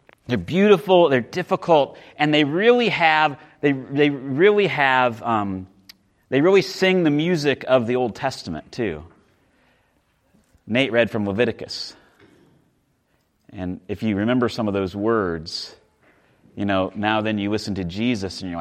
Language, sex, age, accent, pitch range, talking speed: English, male, 30-49, American, 105-160 Hz, 145 wpm